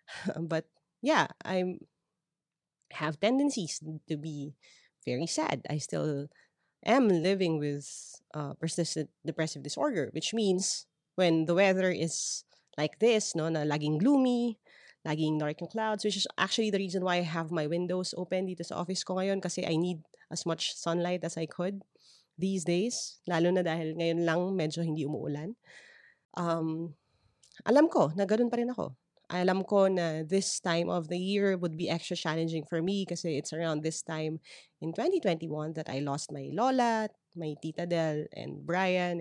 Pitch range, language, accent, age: 160-195 Hz, English, Filipino, 30-49